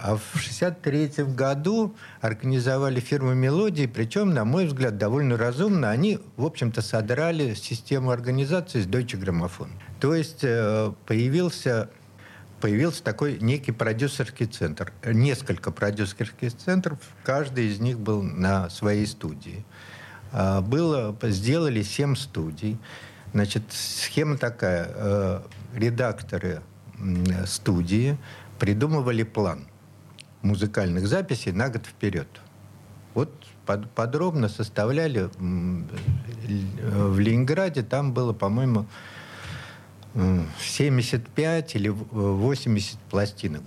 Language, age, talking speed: Russian, 60-79, 95 wpm